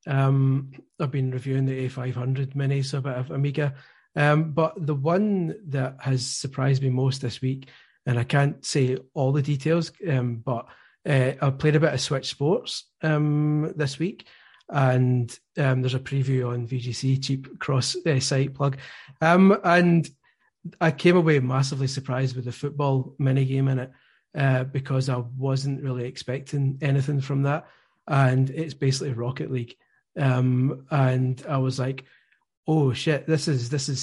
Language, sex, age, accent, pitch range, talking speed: English, male, 30-49, British, 130-150 Hz, 165 wpm